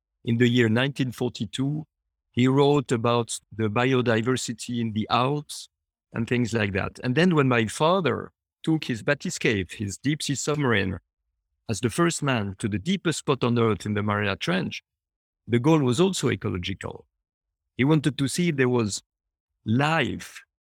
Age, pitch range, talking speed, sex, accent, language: 50-69, 110-145 Hz, 160 wpm, male, French, English